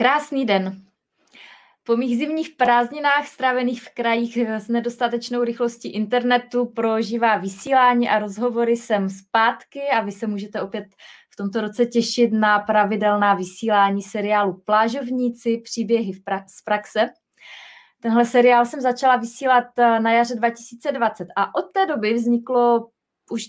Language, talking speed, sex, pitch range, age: Czech, 130 wpm, female, 210-245 Hz, 20-39